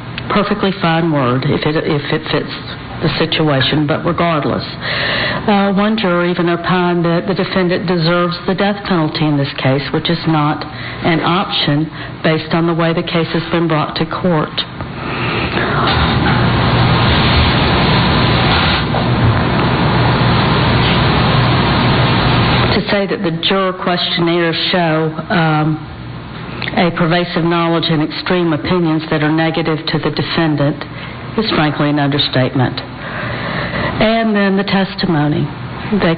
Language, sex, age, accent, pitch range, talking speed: English, female, 60-79, American, 155-180 Hz, 120 wpm